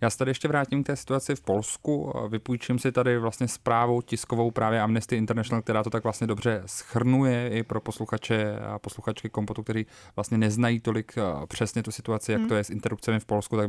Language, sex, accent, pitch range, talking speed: Czech, male, native, 105-115 Hz, 200 wpm